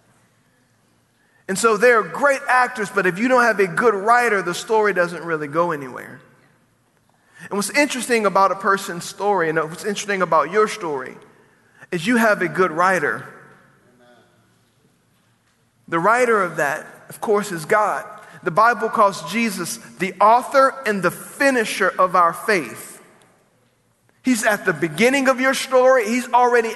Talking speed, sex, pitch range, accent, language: 150 wpm, male, 180-225 Hz, American, English